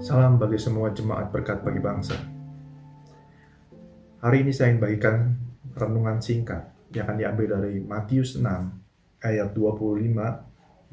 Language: Indonesian